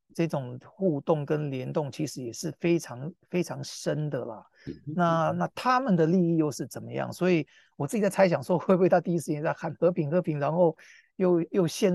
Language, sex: Chinese, male